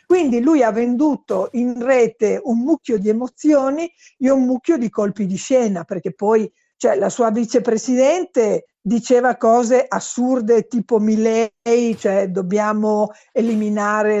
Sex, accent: female, native